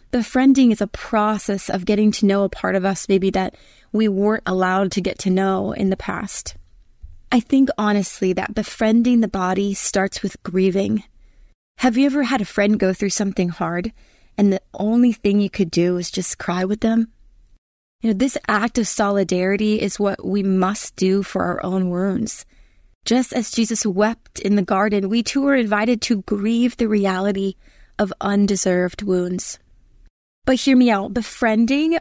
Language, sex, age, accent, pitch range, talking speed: English, female, 20-39, American, 195-235 Hz, 175 wpm